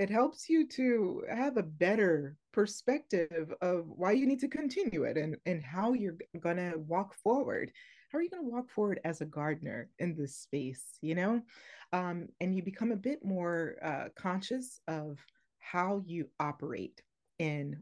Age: 30-49